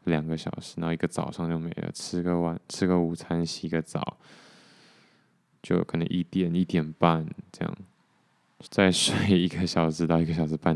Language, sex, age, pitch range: Chinese, male, 20-39, 80-90 Hz